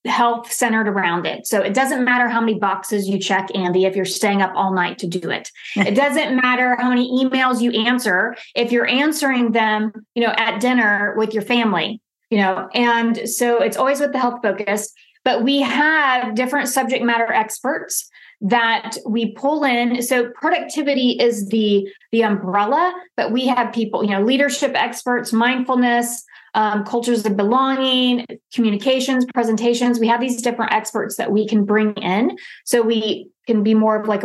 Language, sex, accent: English, female, American